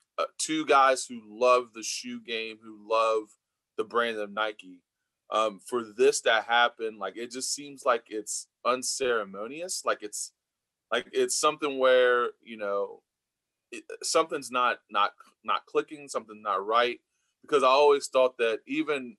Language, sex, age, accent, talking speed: English, male, 20-39, American, 155 wpm